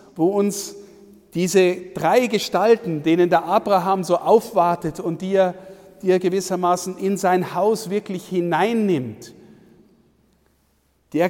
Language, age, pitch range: German, 50-69, 150-195 Hz